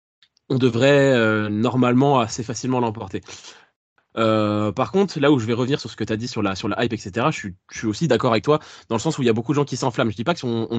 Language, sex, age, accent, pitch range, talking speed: French, male, 20-39, French, 110-140 Hz, 295 wpm